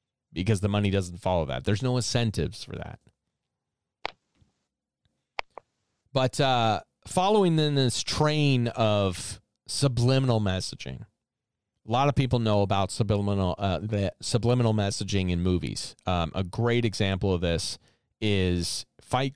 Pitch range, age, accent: 105-130 Hz, 40-59, American